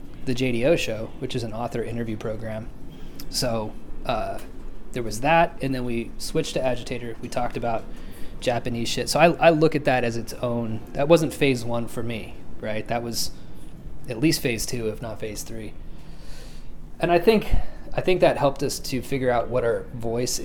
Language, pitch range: English, 110-140 Hz